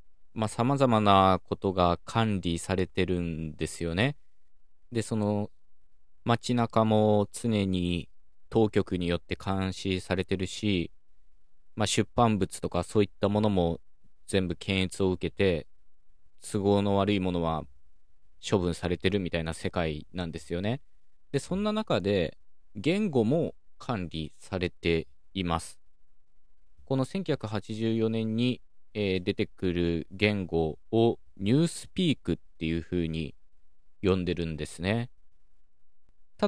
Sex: male